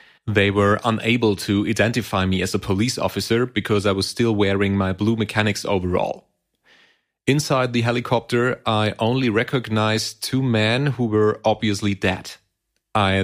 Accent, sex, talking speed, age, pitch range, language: German, male, 145 wpm, 30-49, 105-120 Hz, German